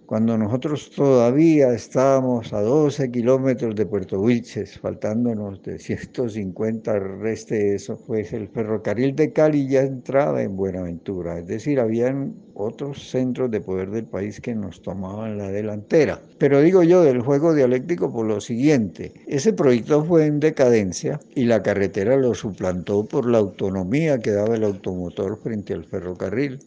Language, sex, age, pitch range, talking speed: Spanish, male, 60-79, 105-130 Hz, 150 wpm